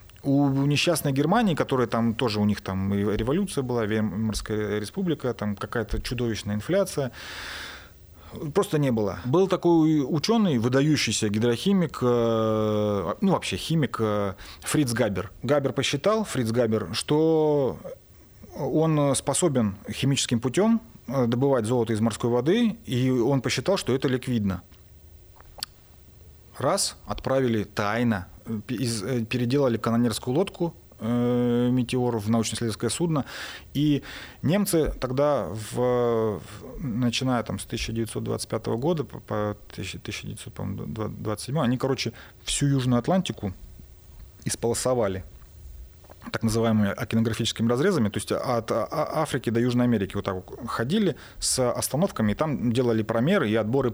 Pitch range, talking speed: 105-140 Hz, 115 wpm